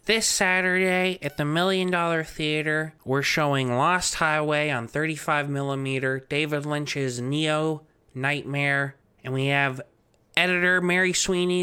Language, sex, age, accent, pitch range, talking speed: English, male, 20-39, American, 125-155 Hz, 120 wpm